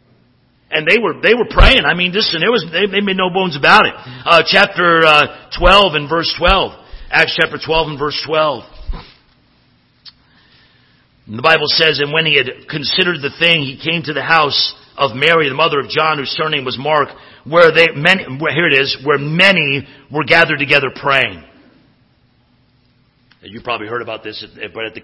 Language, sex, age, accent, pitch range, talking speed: English, male, 50-69, American, 120-165 Hz, 185 wpm